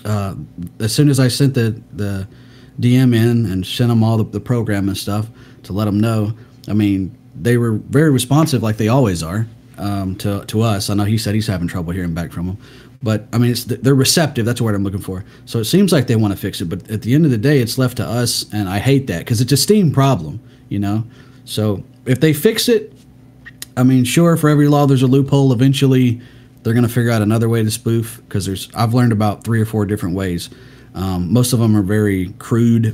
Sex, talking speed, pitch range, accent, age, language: male, 240 wpm, 105-125 Hz, American, 30-49, English